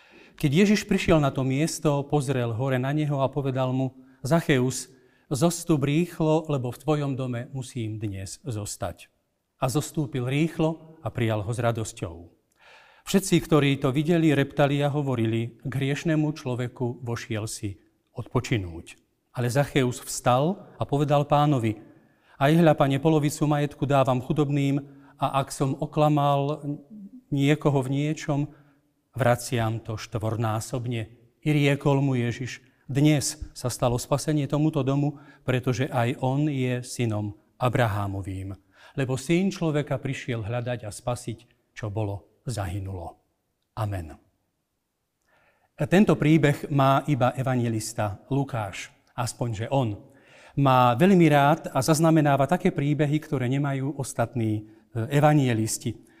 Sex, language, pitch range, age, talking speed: male, Slovak, 120-150 Hz, 40-59, 120 wpm